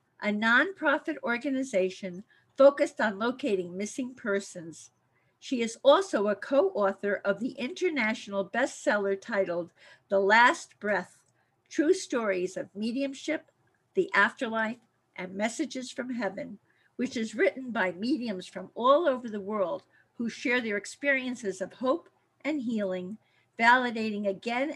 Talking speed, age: 125 wpm, 50-69